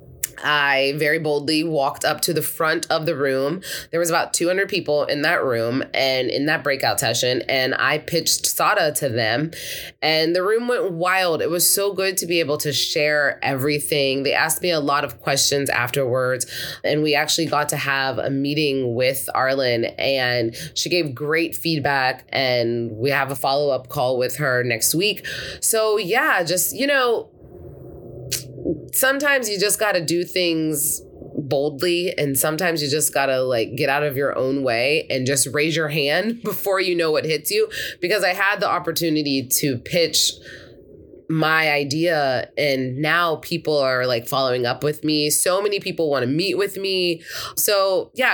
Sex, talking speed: female, 180 wpm